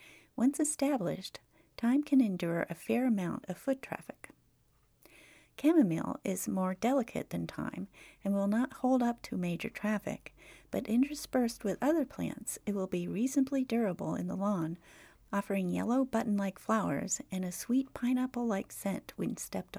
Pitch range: 190-255 Hz